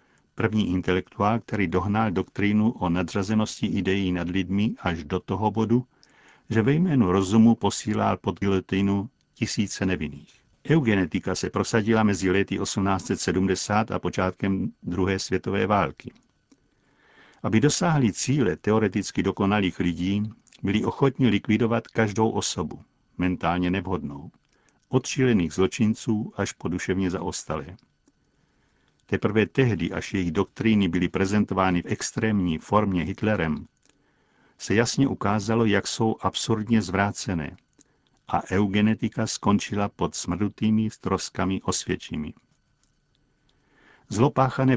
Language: Czech